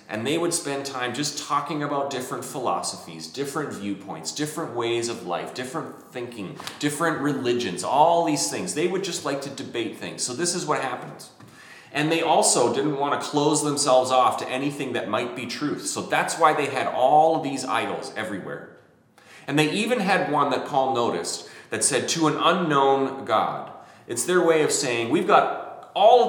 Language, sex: English, male